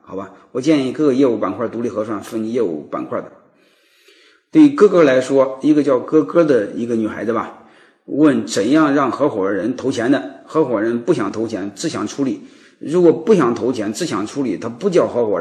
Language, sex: Chinese, male